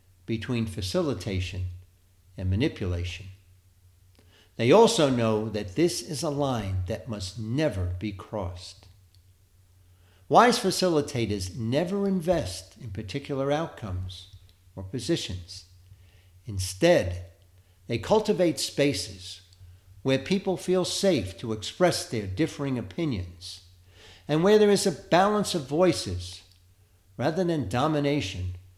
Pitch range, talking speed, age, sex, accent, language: 90-150 Hz, 105 wpm, 60-79, male, American, English